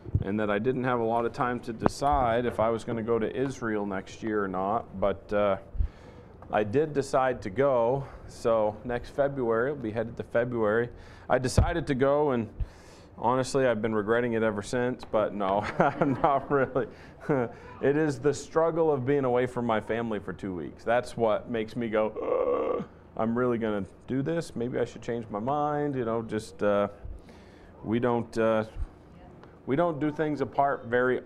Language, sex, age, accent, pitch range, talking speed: English, male, 40-59, American, 105-125 Hz, 190 wpm